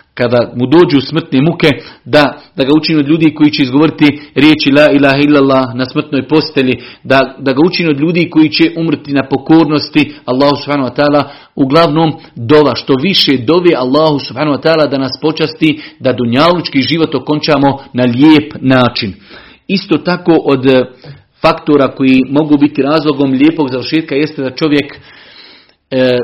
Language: Croatian